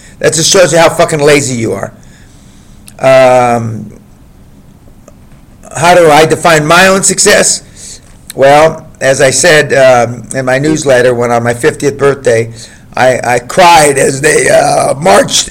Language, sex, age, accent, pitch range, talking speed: English, male, 50-69, American, 125-170 Hz, 145 wpm